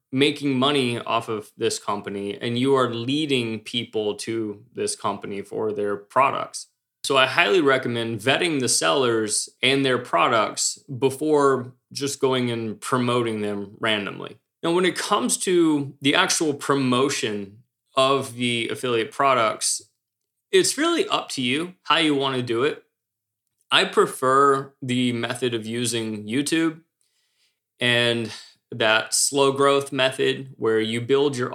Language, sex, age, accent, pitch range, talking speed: English, male, 20-39, American, 115-140 Hz, 140 wpm